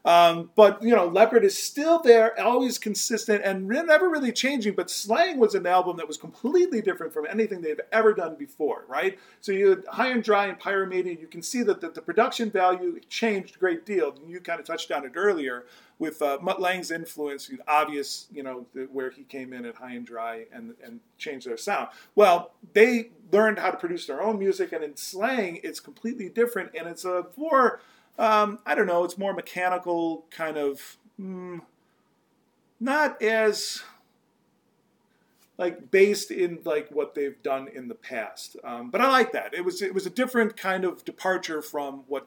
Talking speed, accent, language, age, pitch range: 195 wpm, American, English, 40-59, 150-230 Hz